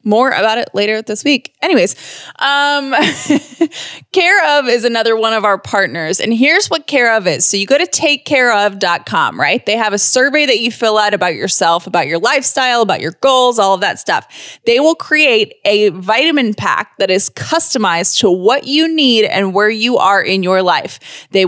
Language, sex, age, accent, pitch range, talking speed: English, female, 20-39, American, 195-275 Hz, 195 wpm